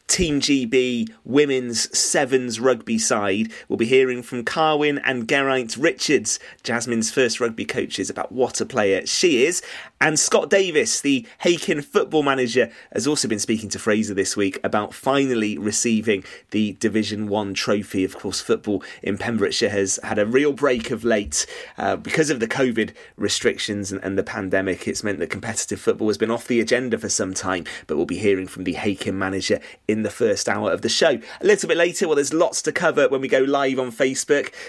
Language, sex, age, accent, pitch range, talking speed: English, male, 30-49, British, 105-140 Hz, 190 wpm